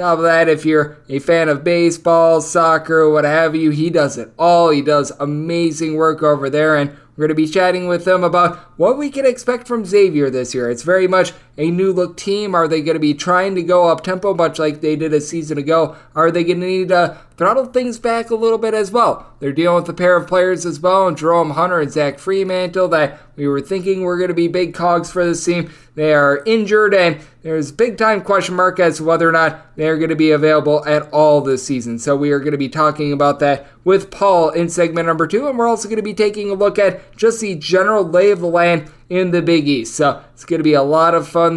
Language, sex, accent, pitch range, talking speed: English, male, American, 155-185 Hz, 250 wpm